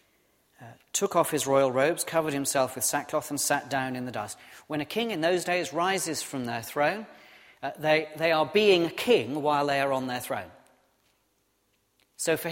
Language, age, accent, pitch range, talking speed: English, 40-59, British, 120-165 Hz, 185 wpm